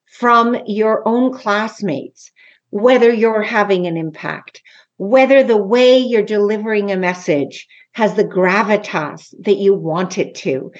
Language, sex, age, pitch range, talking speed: English, female, 50-69, 195-245 Hz, 135 wpm